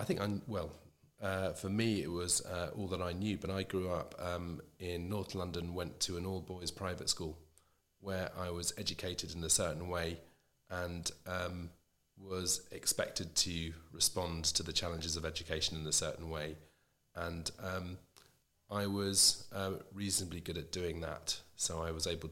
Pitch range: 80-95 Hz